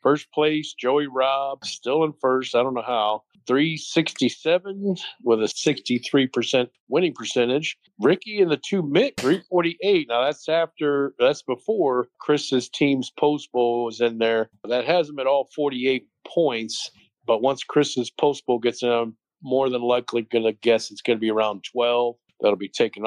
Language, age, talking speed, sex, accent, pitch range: English, 50-69, 165 wpm, male, American, 120-145 Hz